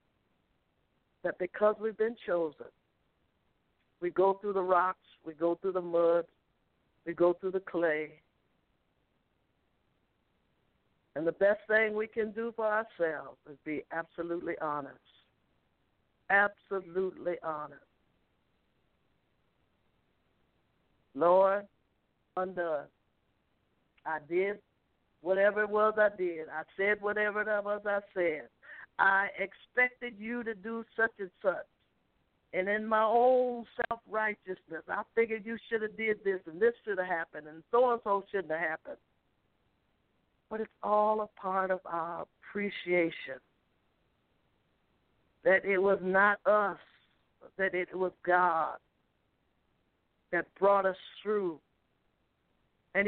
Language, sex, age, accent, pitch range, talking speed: English, female, 60-79, American, 170-215 Hz, 115 wpm